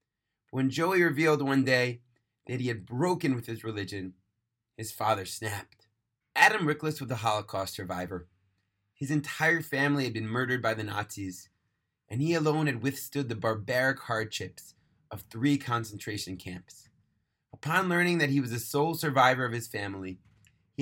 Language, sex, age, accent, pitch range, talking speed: English, male, 30-49, American, 110-145 Hz, 155 wpm